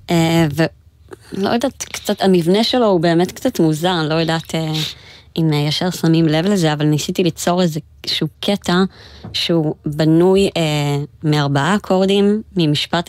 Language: Hebrew